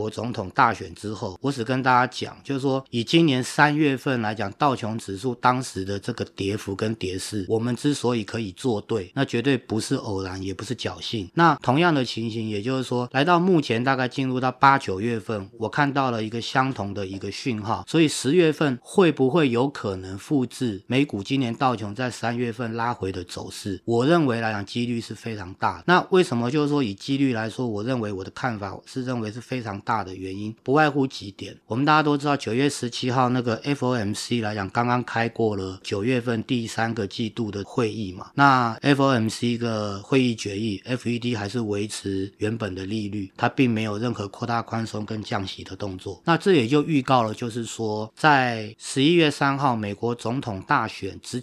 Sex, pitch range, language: male, 105-130 Hz, Chinese